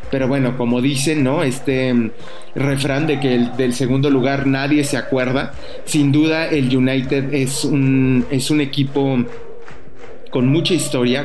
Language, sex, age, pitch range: English, male, 30-49, 125-150 Hz